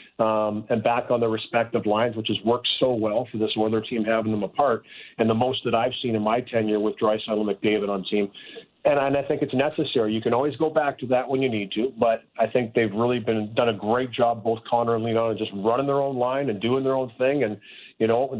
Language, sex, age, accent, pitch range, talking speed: English, male, 40-59, American, 110-135 Hz, 260 wpm